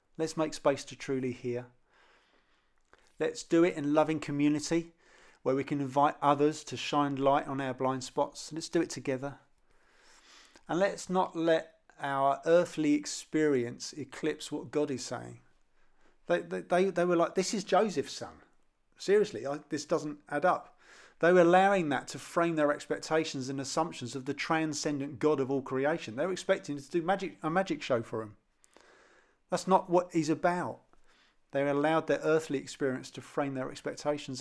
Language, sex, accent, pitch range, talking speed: English, male, British, 130-165 Hz, 170 wpm